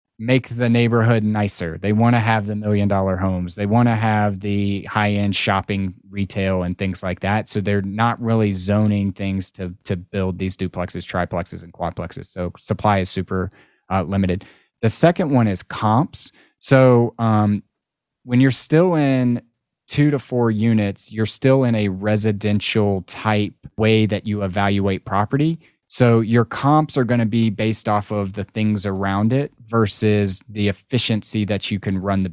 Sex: male